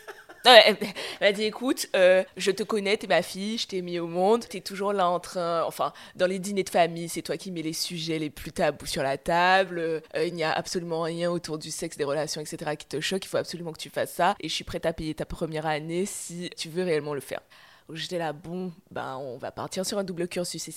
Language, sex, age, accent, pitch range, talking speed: French, female, 20-39, French, 160-205 Hz, 255 wpm